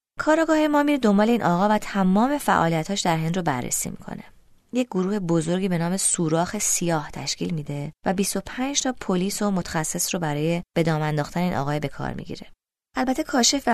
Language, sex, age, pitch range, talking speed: Persian, female, 20-39, 160-205 Hz, 170 wpm